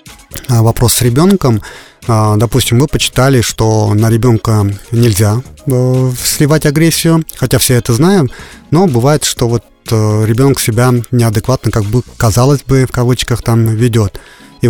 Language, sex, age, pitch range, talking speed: Russian, male, 30-49, 115-135 Hz, 130 wpm